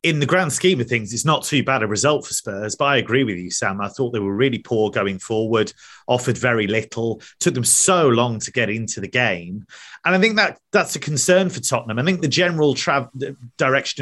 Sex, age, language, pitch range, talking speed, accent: male, 30-49, English, 120-145 Hz, 230 wpm, British